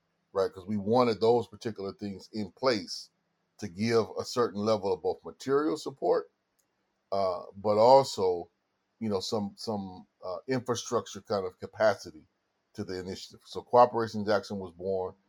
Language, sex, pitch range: English, male, 100-115 Hz